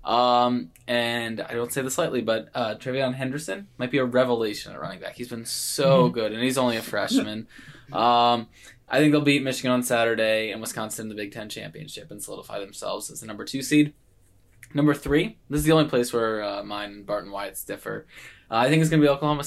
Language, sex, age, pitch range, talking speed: English, male, 20-39, 110-130 Hz, 220 wpm